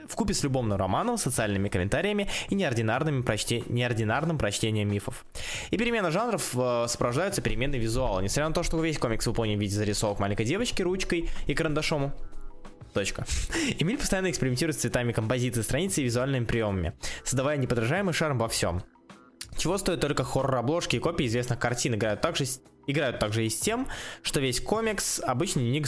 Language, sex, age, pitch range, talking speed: Russian, male, 20-39, 115-155 Hz, 165 wpm